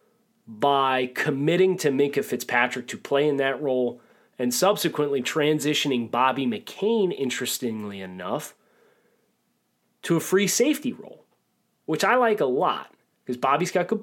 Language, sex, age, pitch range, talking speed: English, male, 30-49, 120-150 Hz, 135 wpm